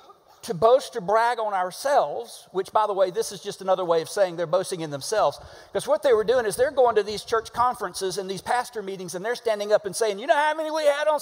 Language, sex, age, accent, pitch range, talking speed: English, male, 40-59, American, 185-245 Hz, 265 wpm